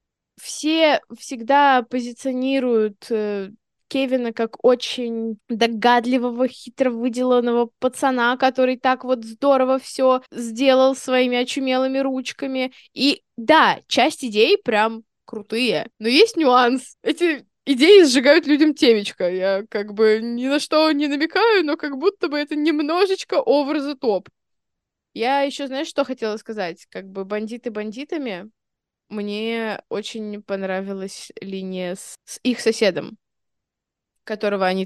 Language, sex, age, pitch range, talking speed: Russian, female, 20-39, 225-305 Hz, 120 wpm